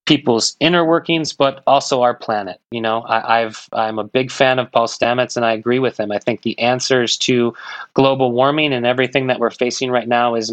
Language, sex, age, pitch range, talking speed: English, male, 30-49, 120-135 Hz, 215 wpm